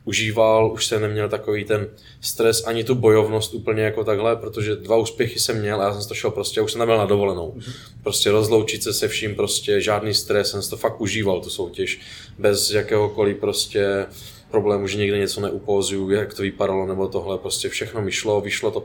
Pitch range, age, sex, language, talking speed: 100-115 Hz, 20-39, male, Czech, 200 wpm